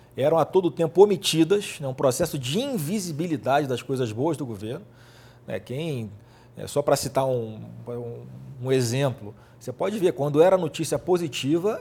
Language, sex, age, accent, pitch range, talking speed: Portuguese, male, 40-59, Brazilian, 120-150 Hz, 165 wpm